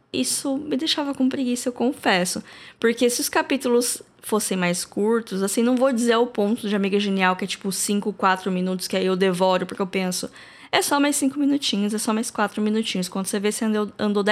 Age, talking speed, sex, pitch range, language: 10-29, 220 wpm, female, 215-255 Hz, Portuguese